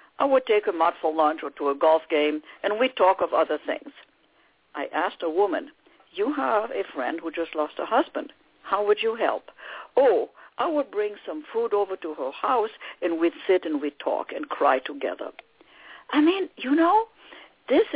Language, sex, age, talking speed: English, female, 60-79, 195 wpm